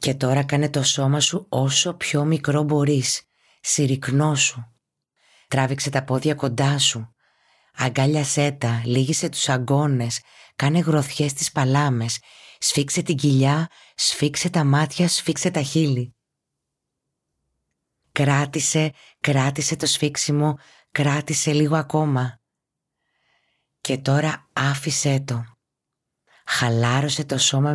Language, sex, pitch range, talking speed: Greek, female, 125-150 Hz, 105 wpm